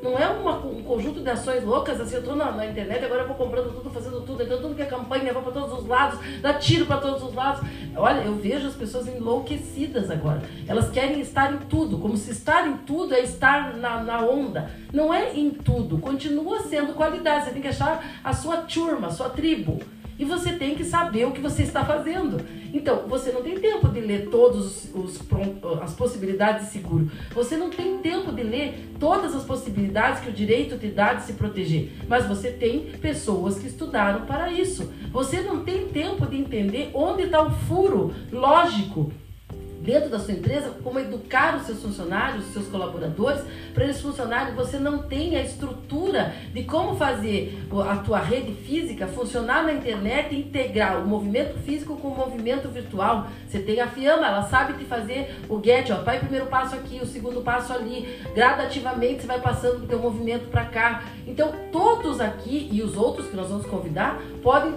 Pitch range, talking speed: 230-290 Hz, 195 wpm